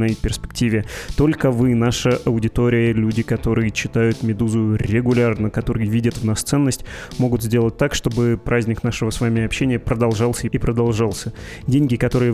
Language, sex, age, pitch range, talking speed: Russian, male, 20-39, 115-130 Hz, 140 wpm